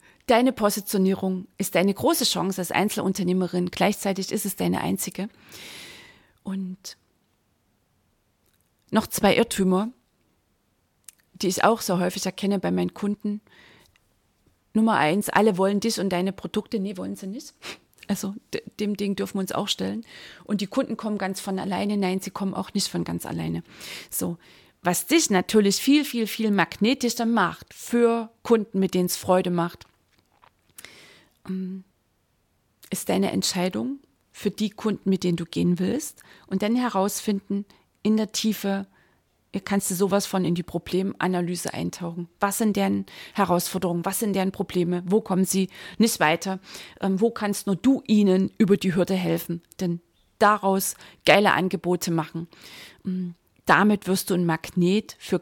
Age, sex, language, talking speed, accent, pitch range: 30-49, female, German, 145 wpm, German, 180-205 Hz